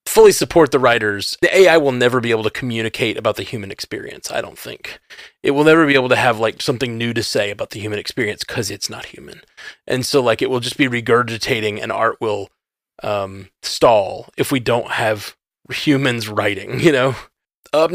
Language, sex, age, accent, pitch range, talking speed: English, male, 30-49, American, 115-165 Hz, 205 wpm